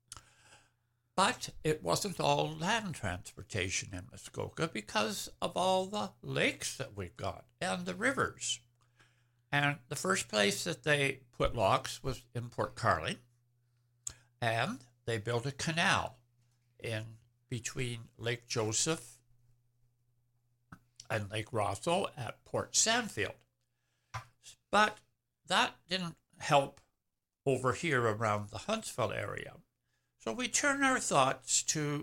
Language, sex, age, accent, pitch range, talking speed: English, male, 60-79, American, 120-150 Hz, 115 wpm